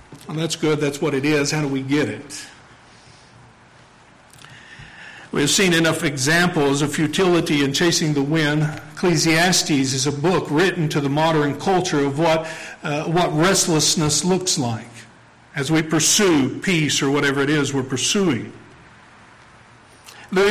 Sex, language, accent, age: male, English, American, 50-69